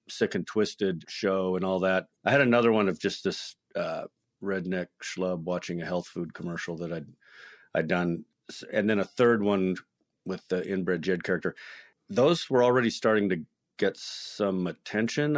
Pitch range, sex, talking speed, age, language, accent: 90-110 Hz, male, 170 wpm, 40-59, English, American